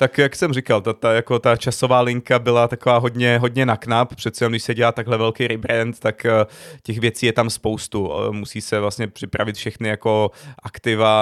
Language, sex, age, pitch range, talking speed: Czech, male, 30-49, 105-115 Hz, 205 wpm